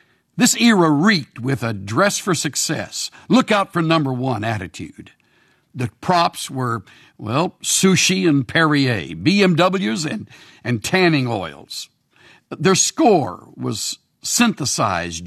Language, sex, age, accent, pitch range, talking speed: English, male, 60-79, American, 120-180 Hz, 120 wpm